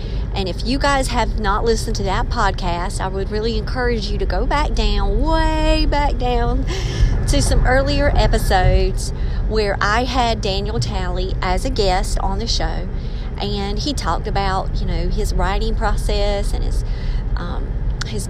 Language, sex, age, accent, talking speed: English, female, 40-59, American, 165 wpm